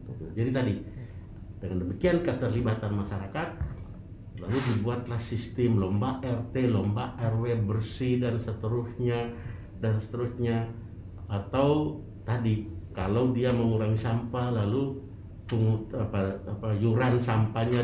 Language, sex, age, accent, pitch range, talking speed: Indonesian, male, 50-69, native, 100-120 Hz, 100 wpm